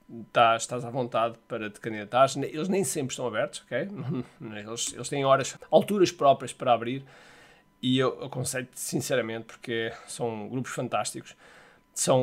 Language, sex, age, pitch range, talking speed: Portuguese, male, 20-39, 125-165 Hz, 145 wpm